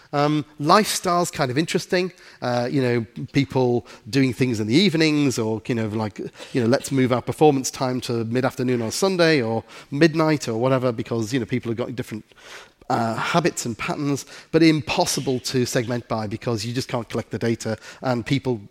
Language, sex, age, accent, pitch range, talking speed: Swedish, male, 40-59, British, 120-150 Hz, 195 wpm